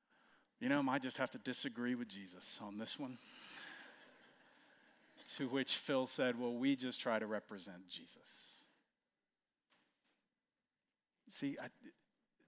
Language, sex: English, male